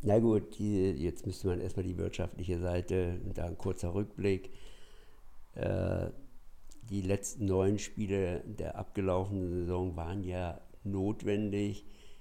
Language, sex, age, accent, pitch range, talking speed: German, male, 60-79, German, 95-110 Hz, 125 wpm